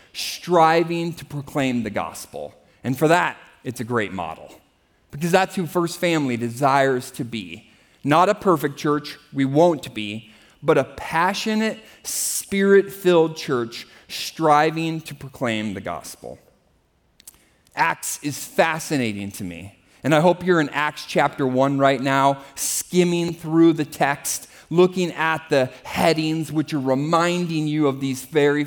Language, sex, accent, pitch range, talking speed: English, male, American, 135-180 Hz, 140 wpm